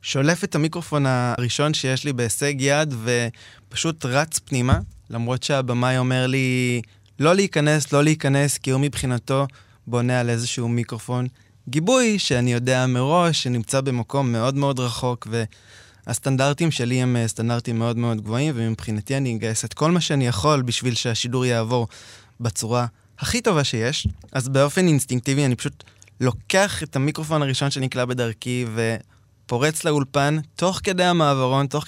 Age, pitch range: 20-39, 120-145 Hz